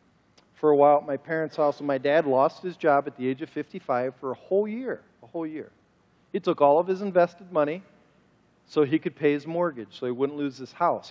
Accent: American